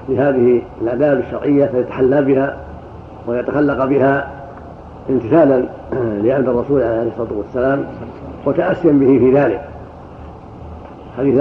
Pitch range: 125-145 Hz